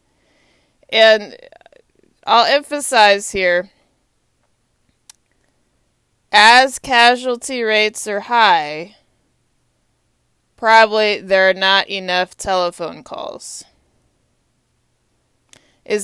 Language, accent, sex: English, American, female